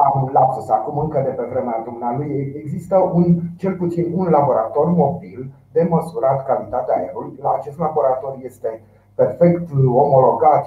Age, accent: 30-49, native